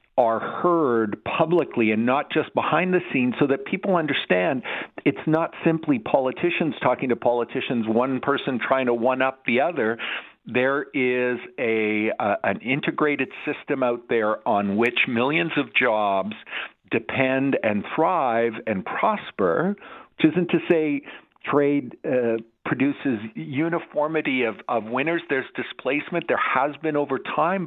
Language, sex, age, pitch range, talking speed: English, male, 50-69, 115-150 Hz, 140 wpm